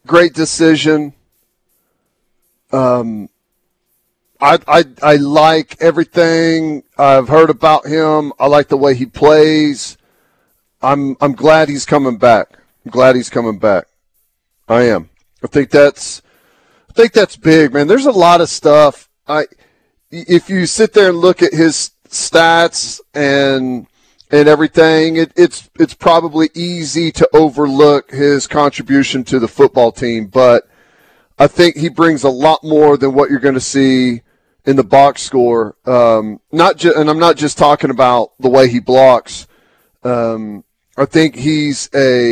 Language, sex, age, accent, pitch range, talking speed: English, male, 40-59, American, 130-155 Hz, 150 wpm